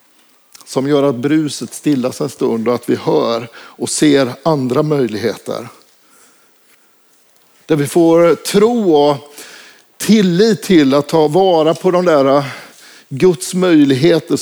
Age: 50-69